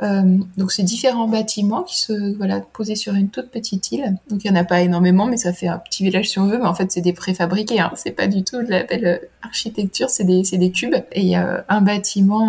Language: French